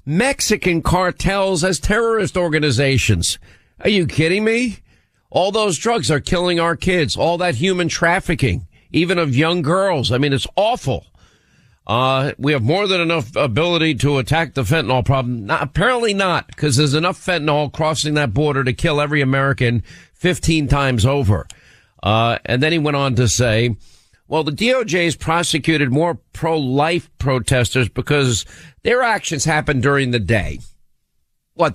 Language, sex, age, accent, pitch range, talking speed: English, male, 50-69, American, 125-165 Hz, 150 wpm